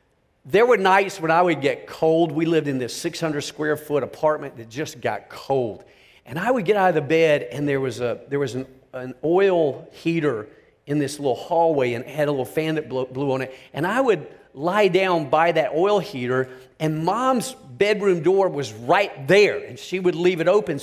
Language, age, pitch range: English, 40-59, 155-240 Hz